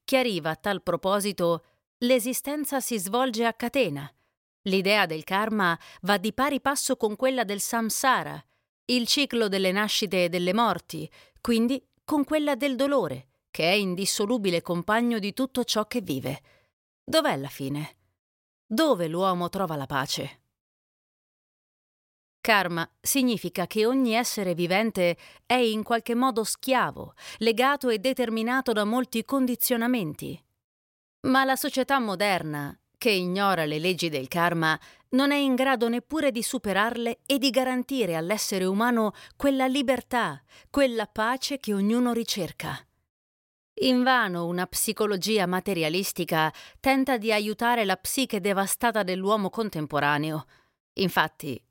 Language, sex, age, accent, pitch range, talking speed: Italian, female, 30-49, native, 175-250 Hz, 125 wpm